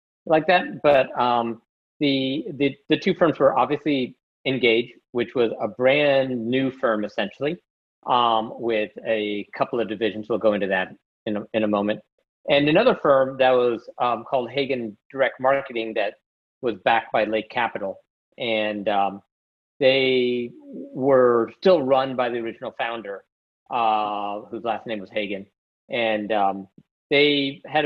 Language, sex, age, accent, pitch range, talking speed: English, male, 50-69, American, 110-145 Hz, 150 wpm